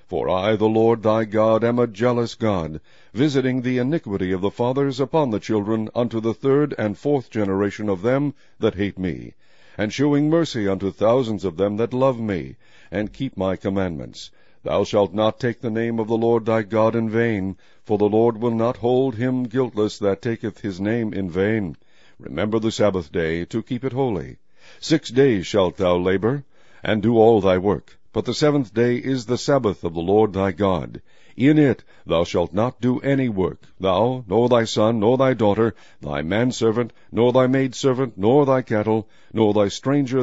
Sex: male